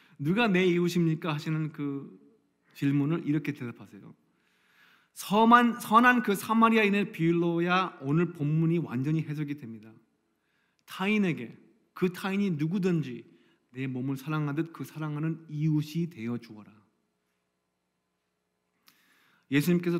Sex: male